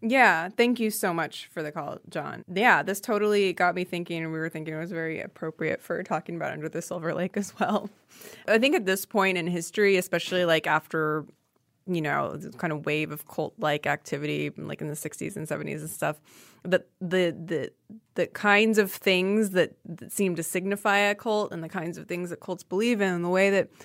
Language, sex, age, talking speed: English, female, 20-39, 220 wpm